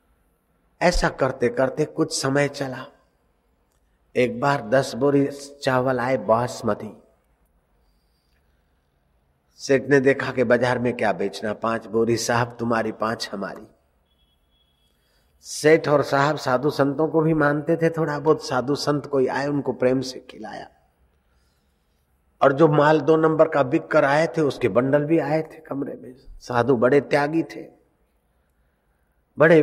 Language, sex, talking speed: Hindi, male, 140 wpm